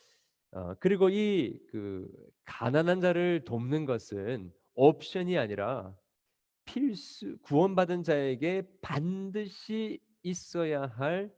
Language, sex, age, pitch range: Korean, male, 40-59, 105-175 Hz